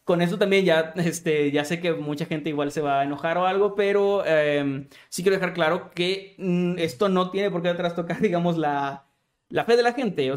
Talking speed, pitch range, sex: 230 wpm, 145-180 Hz, male